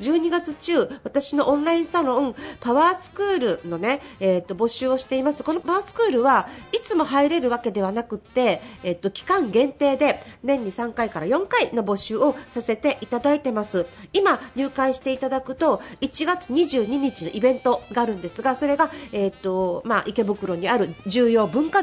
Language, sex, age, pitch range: Japanese, female, 40-59, 220-325 Hz